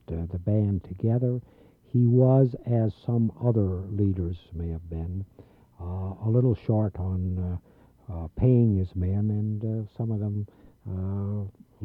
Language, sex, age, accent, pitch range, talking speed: English, male, 60-79, American, 95-110 Hz, 145 wpm